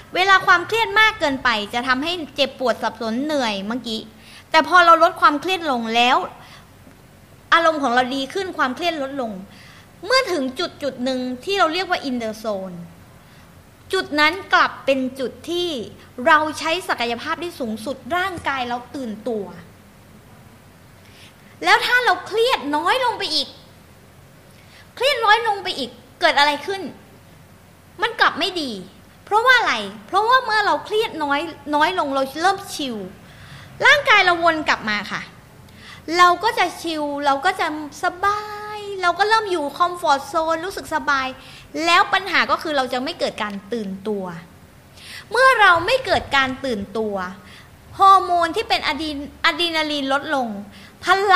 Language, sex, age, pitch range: Thai, female, 20-39, 255-370 Hz